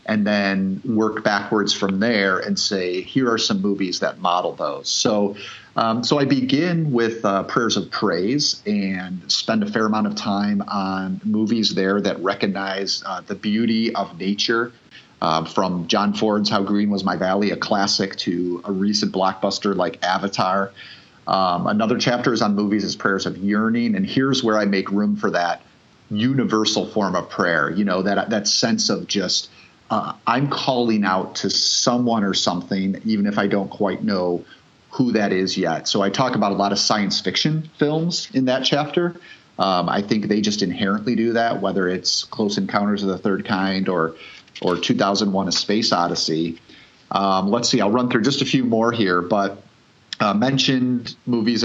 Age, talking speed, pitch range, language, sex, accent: 40-59, 180 wpm, 95-115 Hz, English, male, American